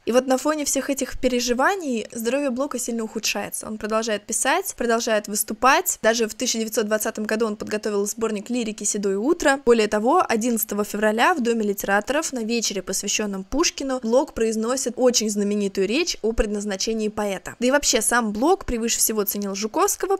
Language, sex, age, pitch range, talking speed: Russian, female, 20-39, 215-255 Hz, 160 wpm